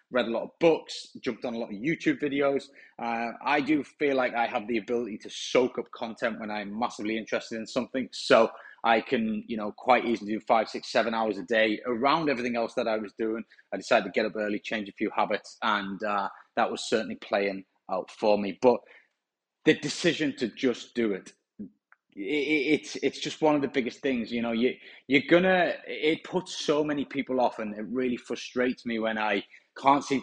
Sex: male